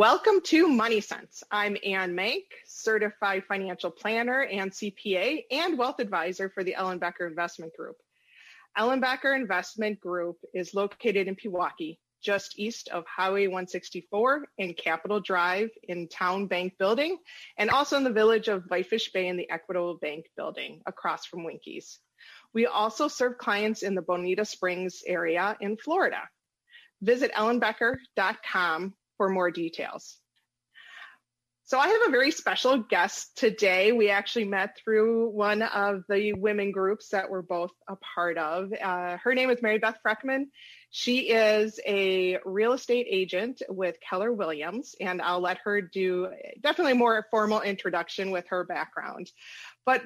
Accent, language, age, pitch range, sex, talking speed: American, English, 30-49, 185-235 Hz, female, 150 wpm